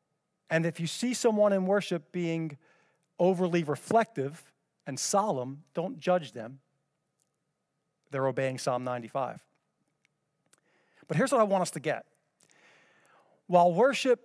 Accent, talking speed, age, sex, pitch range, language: American, 120 wpm, 40-59, male, 135-160 Hz, English